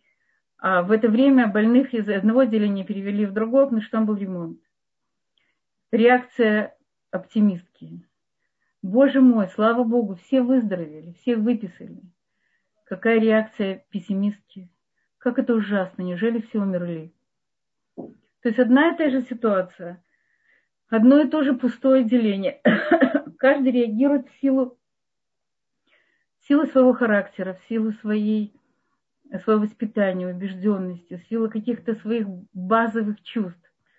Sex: female